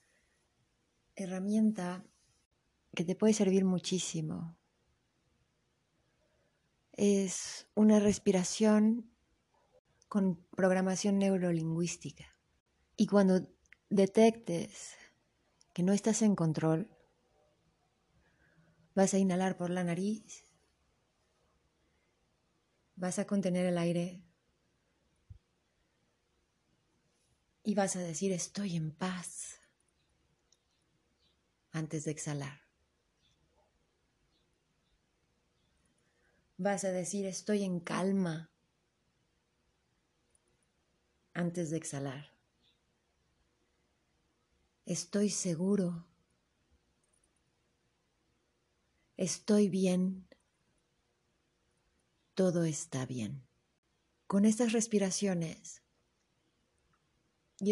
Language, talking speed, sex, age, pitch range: Spanish, 65 wpm, female, 30-49, 150-195 Hz